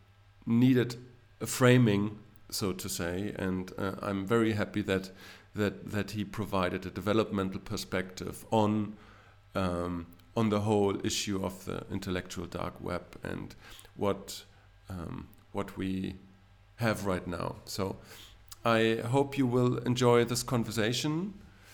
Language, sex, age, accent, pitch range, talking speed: English, male, 50-69, German, 95-120 Hz, 125 wpm